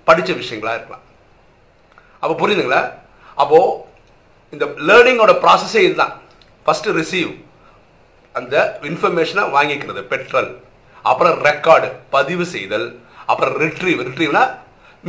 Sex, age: male, 50-69